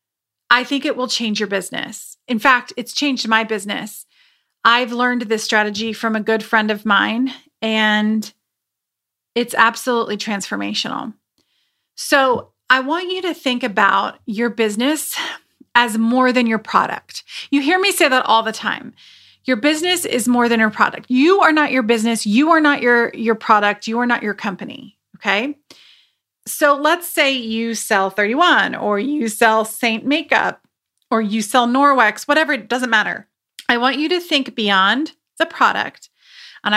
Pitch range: 220-275 Hz